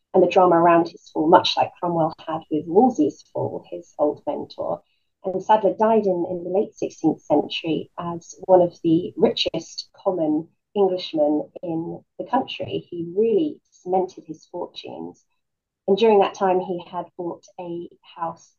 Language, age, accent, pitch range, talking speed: English, 30-49, British, 160-185 Hz, 160 wpm